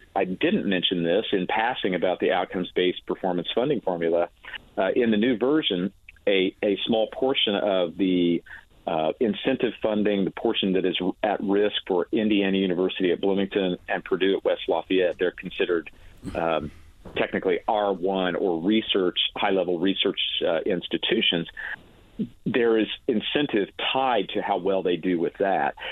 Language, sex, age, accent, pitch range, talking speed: English, male, 40-59, American, 90-105 Hz, 150 wpm